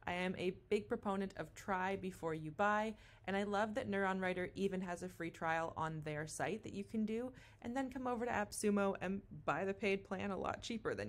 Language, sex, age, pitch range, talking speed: English, female, 20-39, 155-200 Hz, 235 wpm